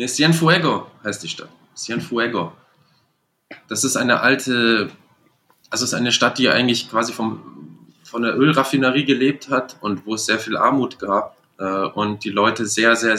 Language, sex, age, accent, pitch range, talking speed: German, male, 20-39, German, 100-125 Hz, 165 wpm